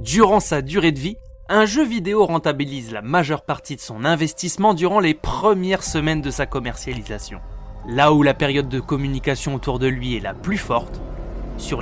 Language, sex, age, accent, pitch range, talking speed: French, male, 20-39, French, 125-165 Hz, 185 wpm